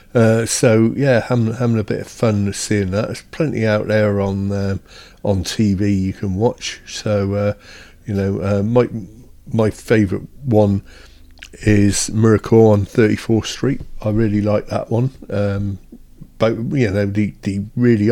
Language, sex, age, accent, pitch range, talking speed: English, male, 50-69, British, 100-125 Hz, 160 wpm